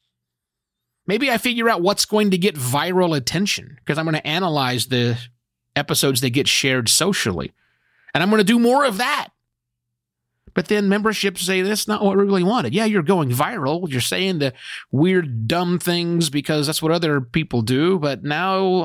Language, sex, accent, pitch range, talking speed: English, male, American, 135-215 Hz, 180 wpm